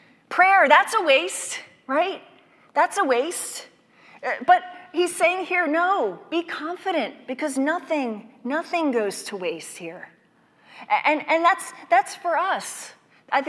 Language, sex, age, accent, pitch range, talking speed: English, female, 30-49, American, 215-290 Hz, 130 wpm